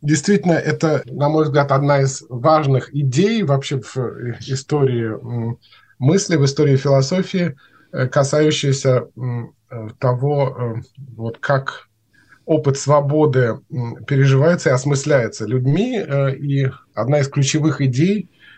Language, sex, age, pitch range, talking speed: Russian, male, 20-39, 125-150 Hz, 100 wpm